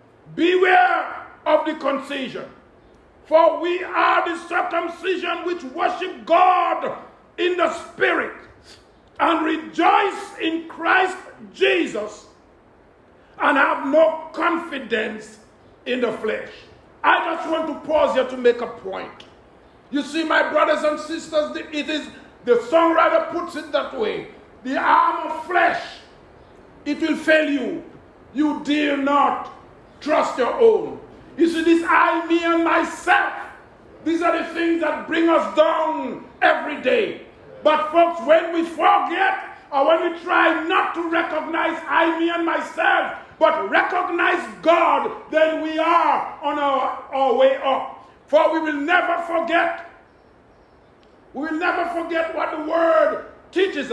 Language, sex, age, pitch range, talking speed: English, male, 50-69, 315-360 Hz, 135 wpm